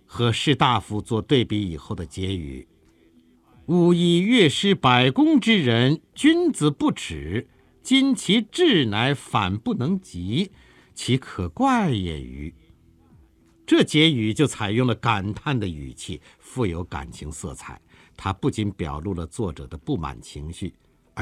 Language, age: Chinese, 60-79